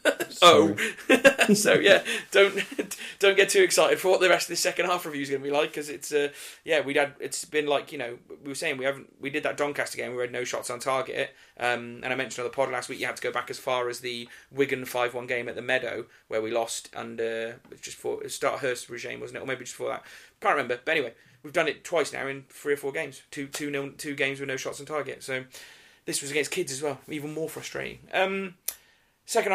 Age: 30-49